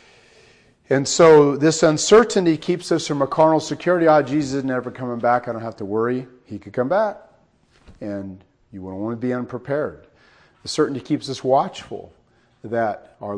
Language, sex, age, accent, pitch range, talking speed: English, male, 40-59, American, 110-135 Hz, 185 wpm